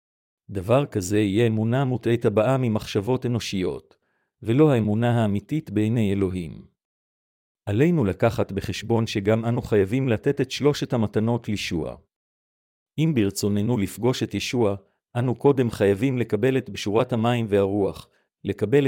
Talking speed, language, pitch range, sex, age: 120 wpm, Hebrew, 100-125 Hz, male, 50-69